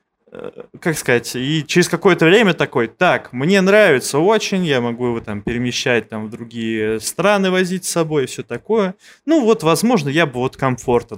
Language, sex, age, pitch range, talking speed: Russian, male, 20-39, 120-170 Hz, 170 wpm